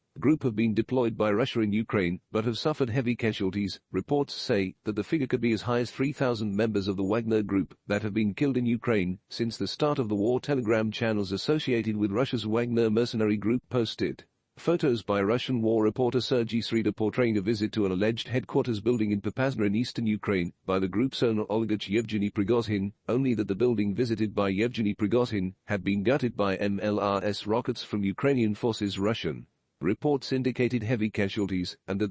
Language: English